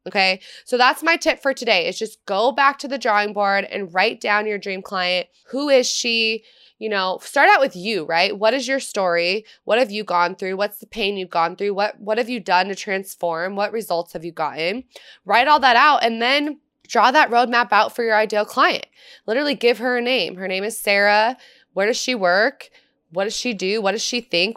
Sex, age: female, 20-39